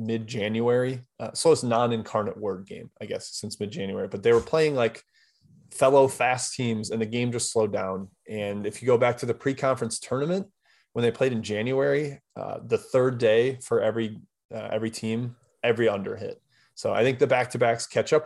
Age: 20-39